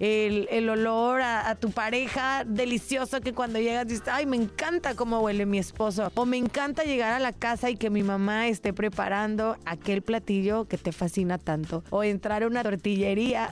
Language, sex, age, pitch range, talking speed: Spanish, female, 30-49, 205-260 Hz, 190 wpm